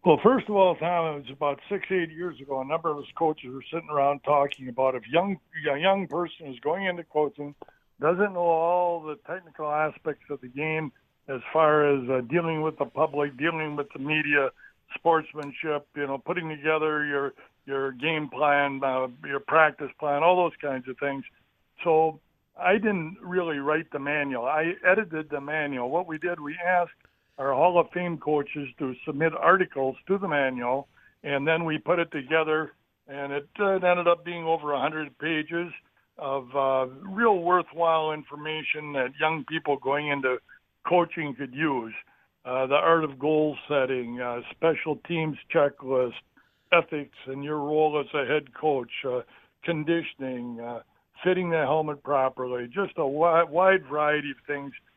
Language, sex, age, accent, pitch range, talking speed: English, male, 60-79, American, 140-165 Hz, 175 wpm